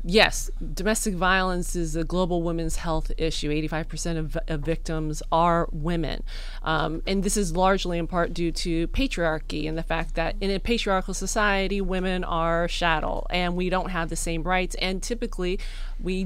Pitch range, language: 170-205 Hz, English